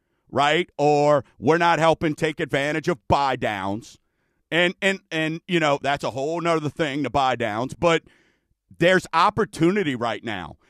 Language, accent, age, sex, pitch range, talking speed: English, American, 50-69, male, 160-205 Hz, 155 wpm